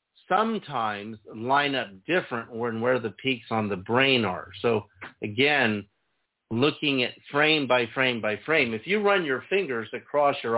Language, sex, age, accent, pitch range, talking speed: English, male, 50-69, American, 105-140 Hz, 160 wpm